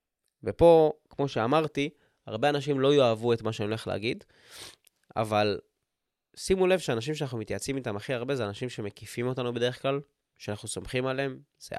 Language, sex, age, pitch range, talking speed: Hebrew, male, 20-39, 115-155 Hz, 160 wpm